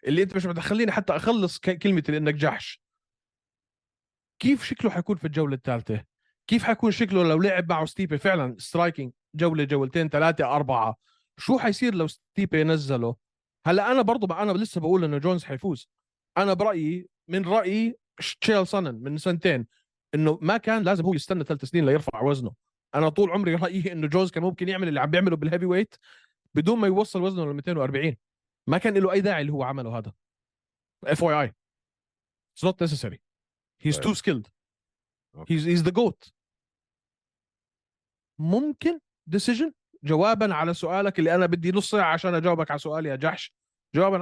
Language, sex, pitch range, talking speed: Arabic, male, 145-195 Hz, 155 wpm